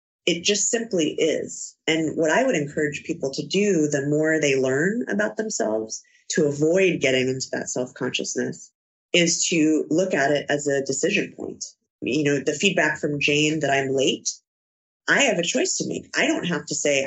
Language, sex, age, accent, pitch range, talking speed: English, female, 30-49, American, 145-180 Hz, 185 wpm